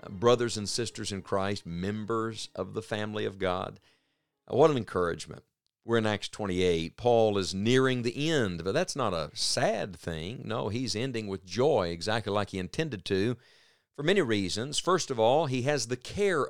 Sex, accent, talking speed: male, American, 180 wpm